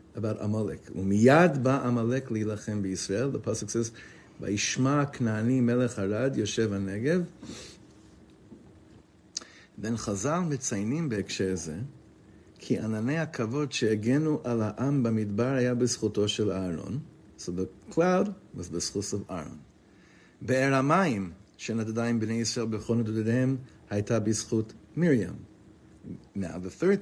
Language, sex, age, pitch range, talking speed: English, male, 50-69, 105-130 Hz, 120 wpm